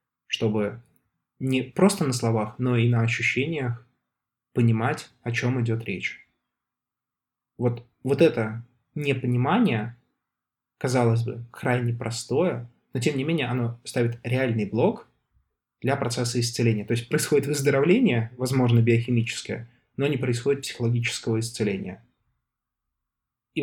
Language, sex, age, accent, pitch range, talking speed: Russian, male, 20-39, native, 115-130 Hz, 115 wpm